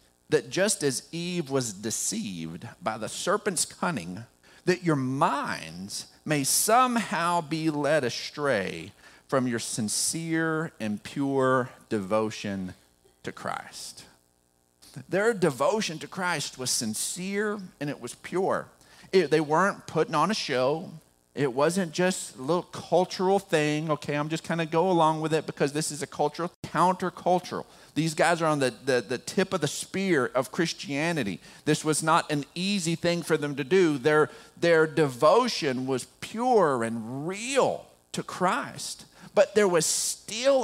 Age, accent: 40-59, American